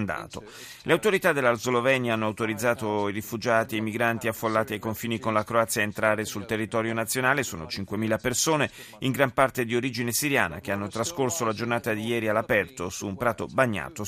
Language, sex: Italian, male